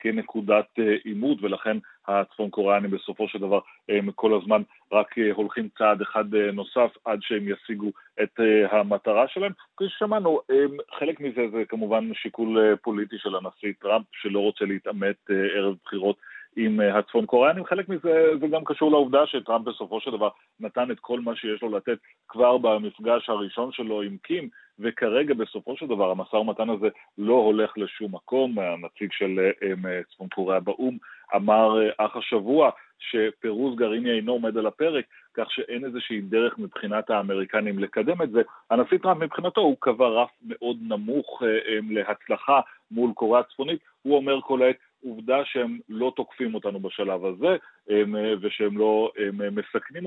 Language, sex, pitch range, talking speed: Hebrew, male, 105-125 Hz, 150 wpm